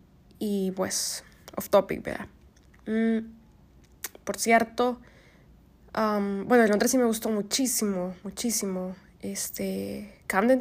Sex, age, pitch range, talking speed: female, 20-39, 190-225 Hz, 100 wpm